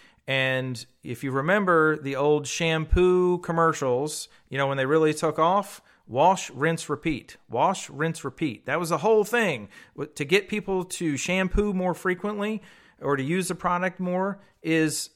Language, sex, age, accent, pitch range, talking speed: English, male, 40-59, American, 135-190 Hz, 160 wpm